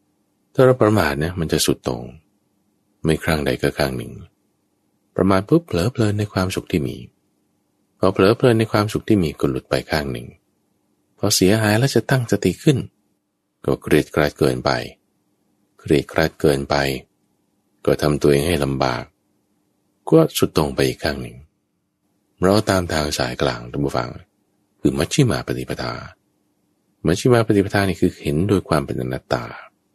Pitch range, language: 75-105 Hz, English